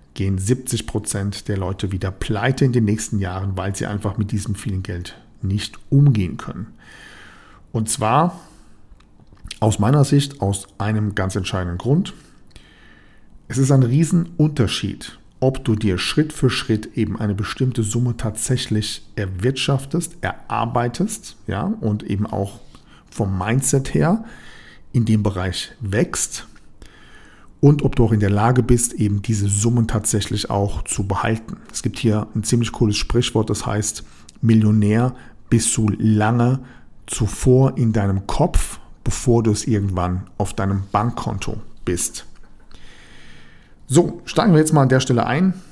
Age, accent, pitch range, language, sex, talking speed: 50-69, German, 100-130 Hz, German, male, 140 wpm